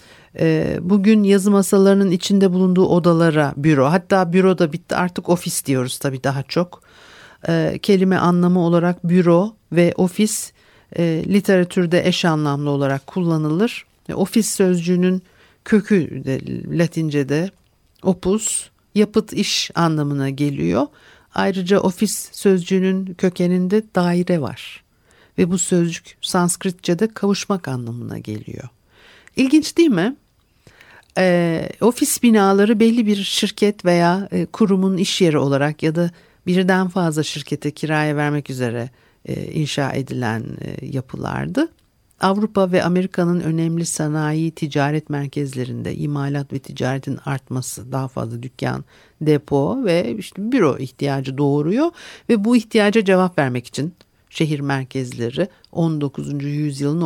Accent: native